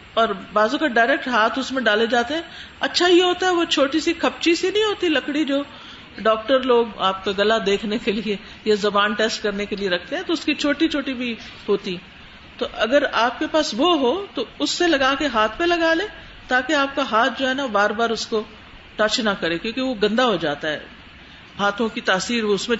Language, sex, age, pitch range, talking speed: Urdu, female, 50-69, 210-290 Hz, 235 wpm